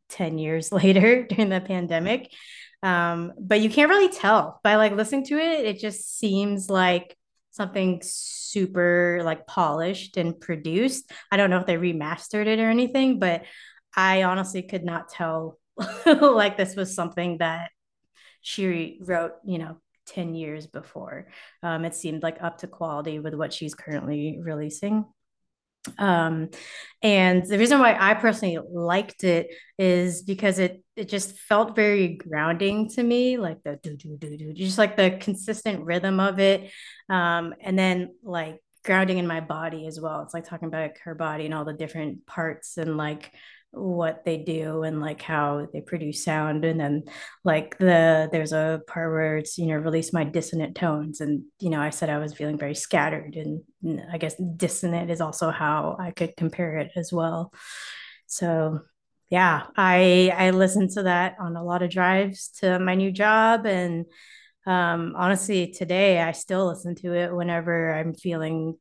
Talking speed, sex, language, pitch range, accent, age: 175 wpm, female, English, 160-195 Hz, American, 20-39